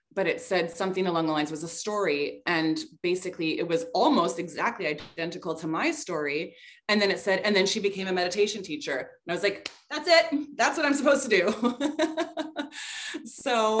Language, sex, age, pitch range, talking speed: English, female, 20-39, 160-220 Hz, 190 wpm